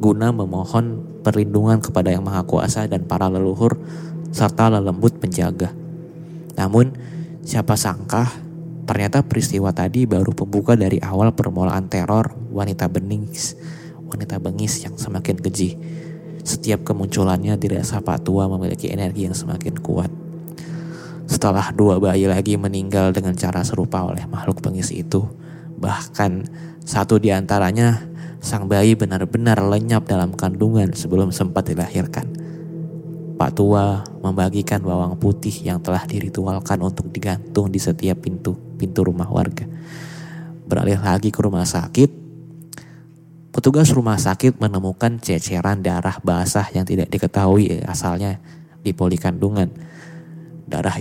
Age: 20-39